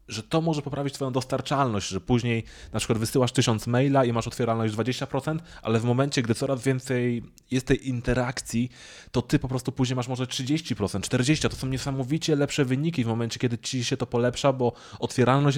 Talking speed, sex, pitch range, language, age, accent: 190 wpm, male, 100-135 Hz, Polish, 20-39, native